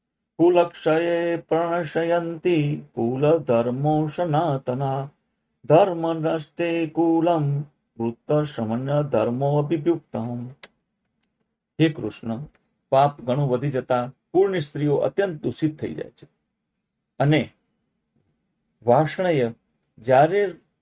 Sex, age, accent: male, 50-69, native